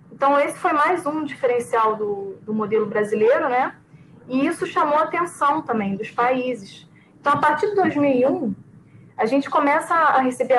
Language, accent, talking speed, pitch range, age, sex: Portuguese, Brazilian, 165 wpm, 235-285 Hz, 10-29, female